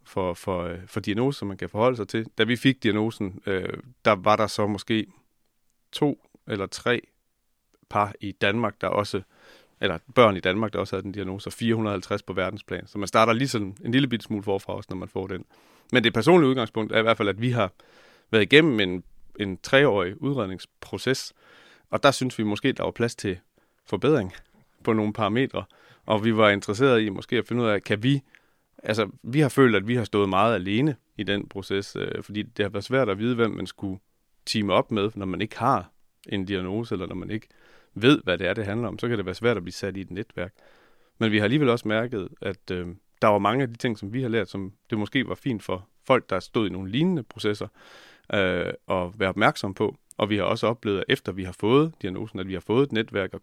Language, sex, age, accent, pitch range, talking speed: Danish, male, 30-49, native, 100-115 Hz, 235 wpm